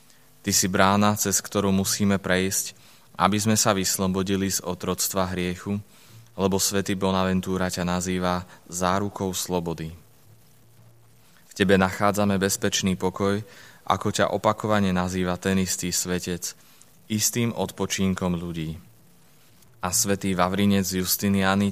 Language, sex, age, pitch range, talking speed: Slovak, male, 20-39, 90-100 Hz, 110 wpm